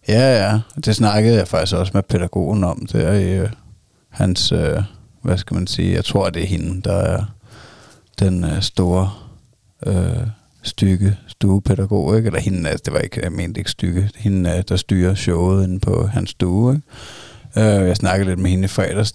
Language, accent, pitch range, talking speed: Danish, native, 90-105 Hz, 175 wpm